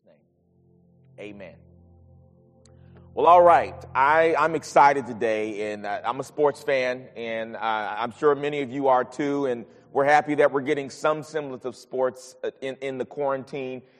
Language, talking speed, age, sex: English, 155 wpm, 30-49, male